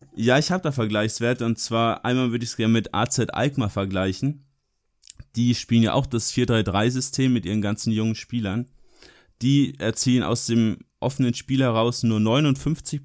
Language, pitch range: German, 110-125 Hz